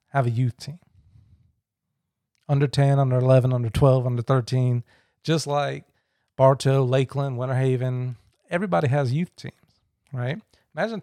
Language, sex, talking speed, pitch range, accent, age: English, male, 130 wpm, 125-170 Hz, American, 40-59